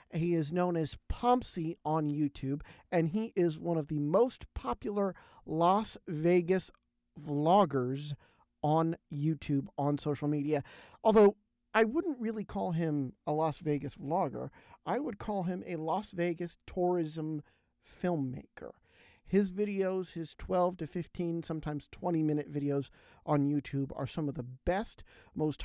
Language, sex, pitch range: English, male, 145-175 Hz